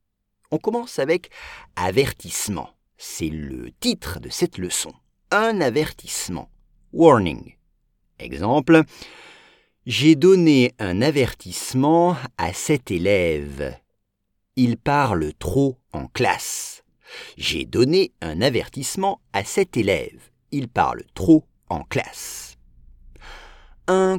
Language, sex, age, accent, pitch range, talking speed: English, male, 50-69, French, 100-165 Hz, 95 wpm